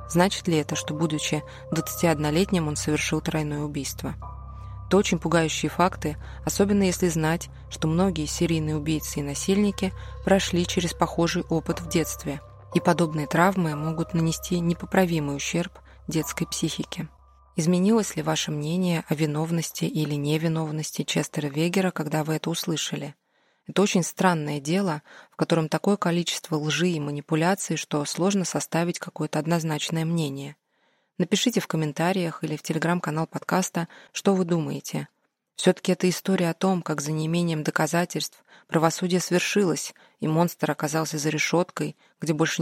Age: 20-39